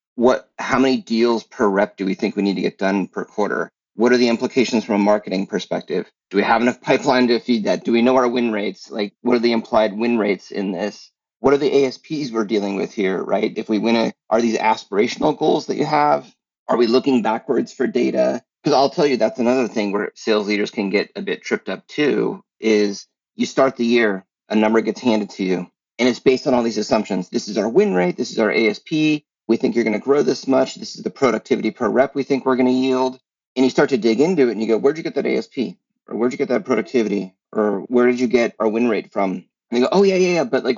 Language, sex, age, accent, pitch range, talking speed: English, male, 30-49, American, 105-125 Hz, 255 wpm